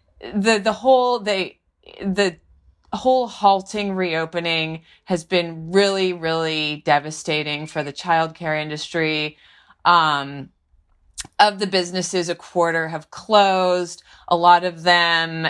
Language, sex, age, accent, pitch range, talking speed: English, female, 30-49, American, 155-185 Hz, 110 wpm